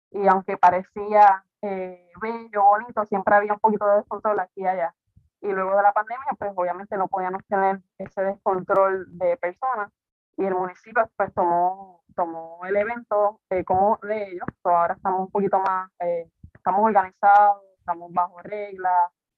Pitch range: 185-215 Hz